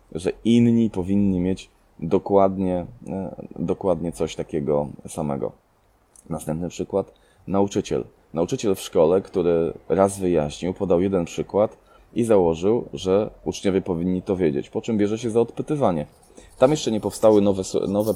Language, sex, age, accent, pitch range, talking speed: Polish, male, 20-39, native, 80-100 Hz, 130 wpm